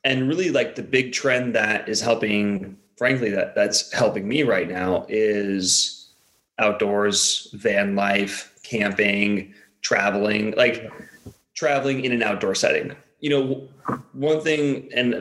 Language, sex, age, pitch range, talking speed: English, male, 30-49, 105-130 Hz, 130 wpm